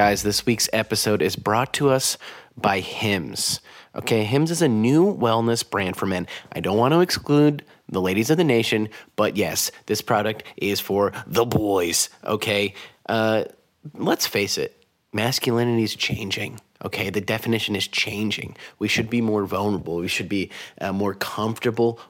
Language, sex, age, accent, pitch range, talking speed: English, male, 30-49, American, 100-120 Hz, 165 wpm